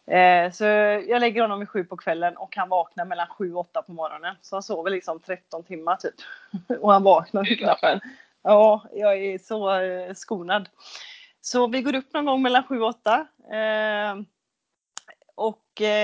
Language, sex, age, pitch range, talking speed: Swedish, female, 30-49, 185-225 Hz, 170 wpm